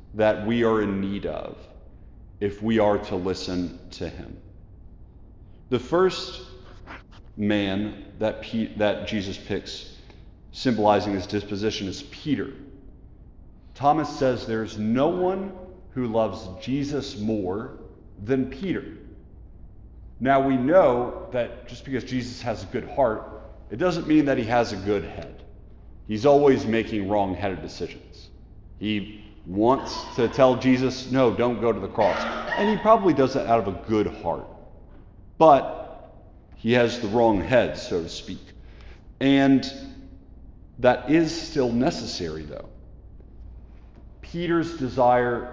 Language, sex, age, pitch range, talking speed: English, male, 40-59, 95-130 Hz, 130 wpm